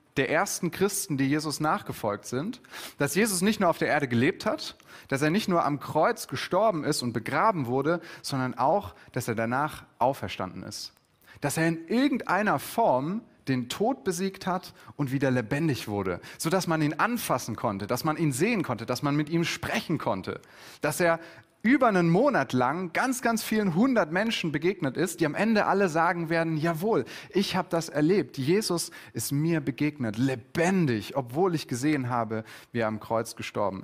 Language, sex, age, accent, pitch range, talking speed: German, male, 30-49, German, 135-185 Hz, 180 wpm